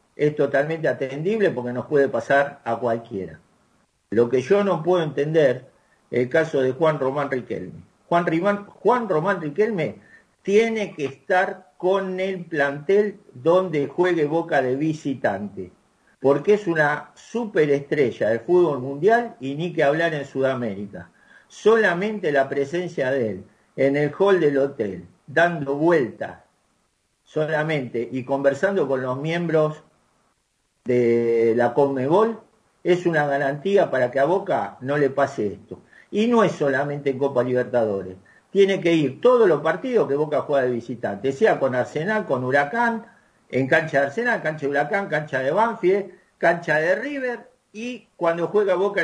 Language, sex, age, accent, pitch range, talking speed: Spanish, male, 50-69, Argentinian, 140-195 Hz, 150 wpm